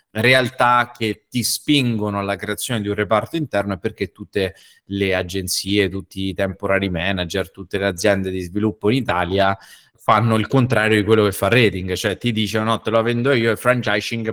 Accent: native